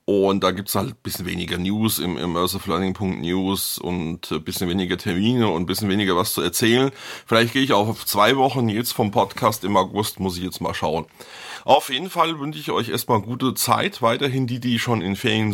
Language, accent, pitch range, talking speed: German, German, 95-115 Hz, 210 wpm